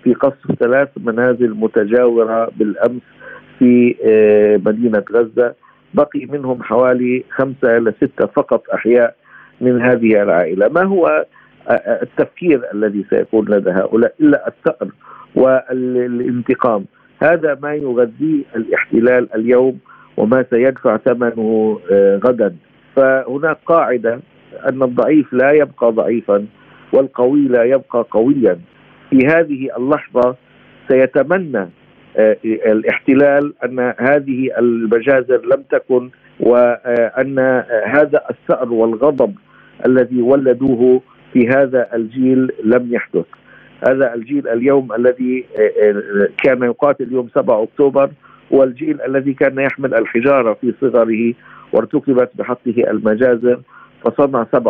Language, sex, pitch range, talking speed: Arabic, male, 115-135 Hz, 100 wpm